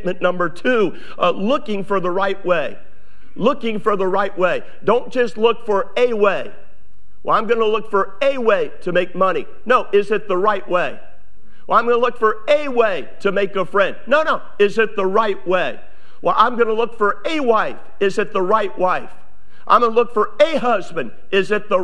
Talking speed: 215 wpm